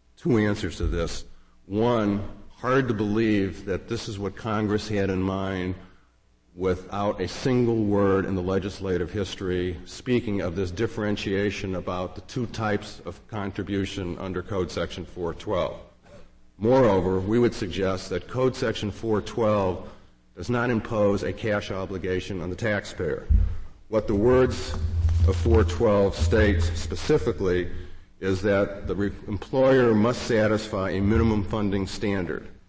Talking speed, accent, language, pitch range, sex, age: 130 wpm, American, English, 90-105 Hz, male, 50-69